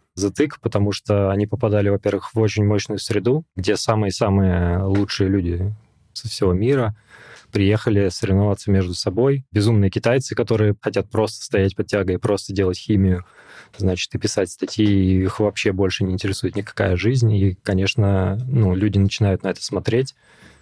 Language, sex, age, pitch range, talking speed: Russian, male, 20-39, 95-110 Hz, 150 wpm